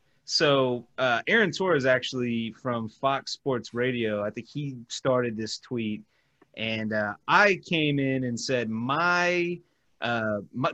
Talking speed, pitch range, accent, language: 145 wpm, 125-160 Hz, American, English